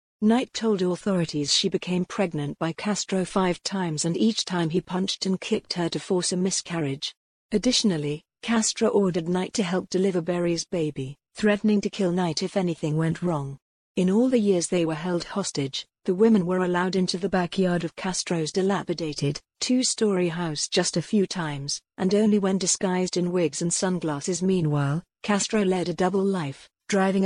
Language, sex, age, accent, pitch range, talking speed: English, female, 50-69, British, 170-195 Hz, 170 wpm